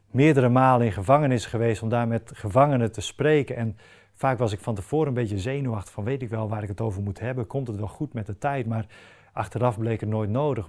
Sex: male